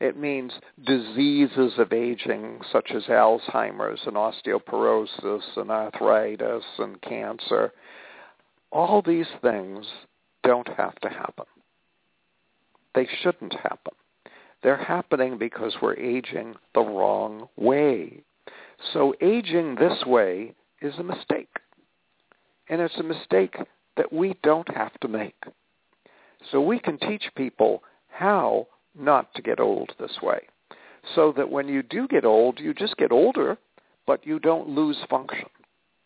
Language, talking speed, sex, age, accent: English, 130 wpm, male, 60-79, American